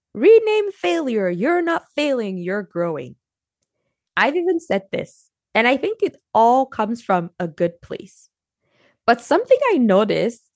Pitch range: 180-265 Hz